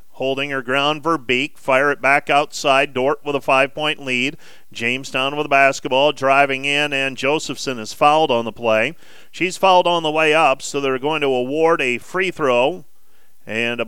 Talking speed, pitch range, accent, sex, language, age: 180 wpm, 120-145 Hz, American, male, English, 40-59